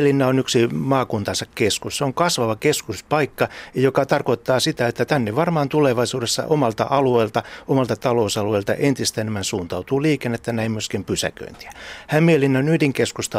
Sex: male